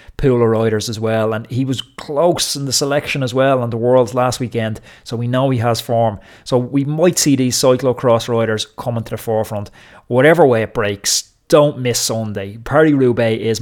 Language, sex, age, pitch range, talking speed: English, male, 30-49, 110-135 Hz, 205 wpm